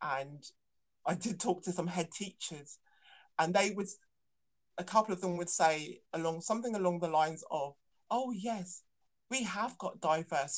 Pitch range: 160-195 Hz